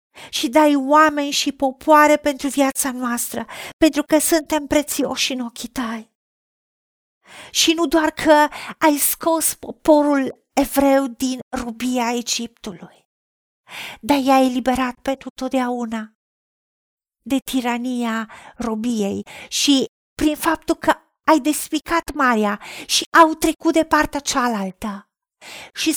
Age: 40-59